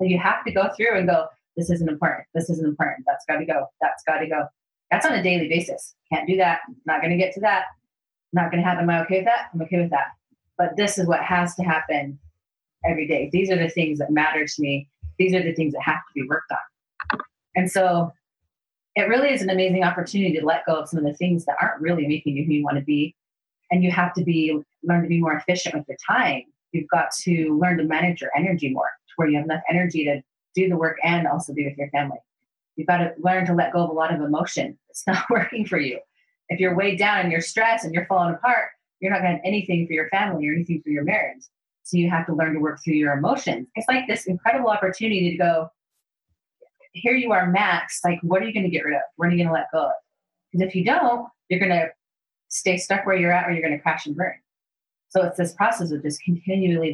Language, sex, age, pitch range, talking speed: English, female, 30-49, 155-185 Hz, 255 wpm